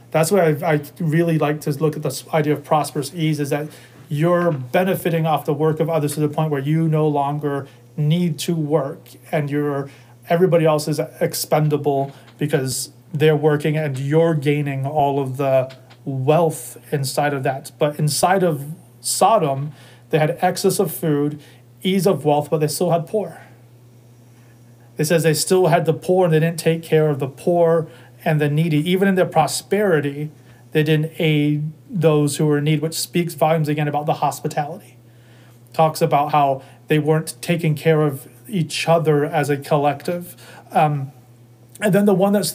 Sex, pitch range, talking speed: male, 140-160 Hz, 175 wpm